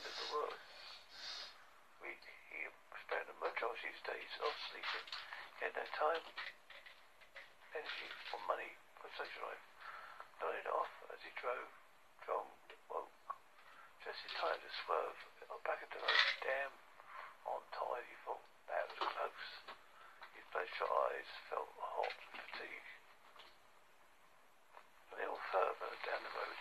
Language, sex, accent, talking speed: English, male, British, 140 wpm